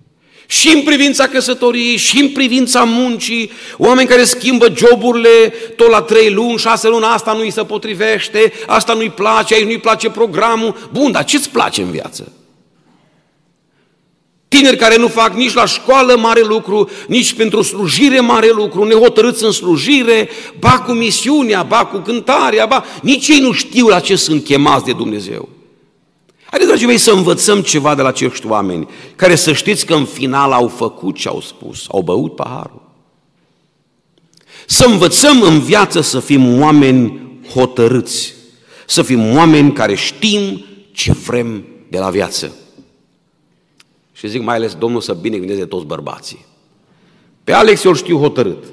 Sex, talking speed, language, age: male, 155 wpm, Romanian, 50-69